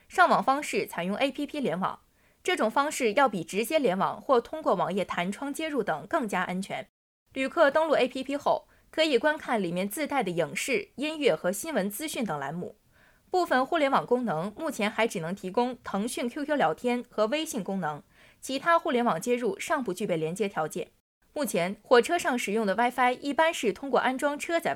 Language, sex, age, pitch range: Chinese, female, 20-39, 205-300 Hz